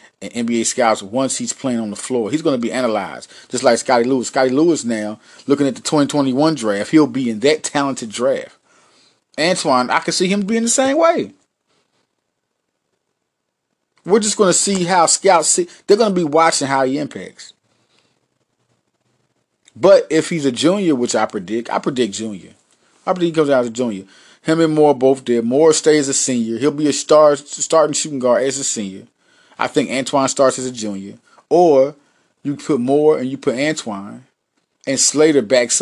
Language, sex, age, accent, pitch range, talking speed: English, male, 30-49, American, 120-165 Hz, 190 wpm